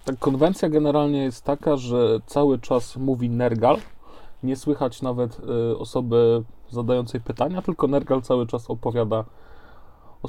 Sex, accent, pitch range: male, native, 120-145 Hz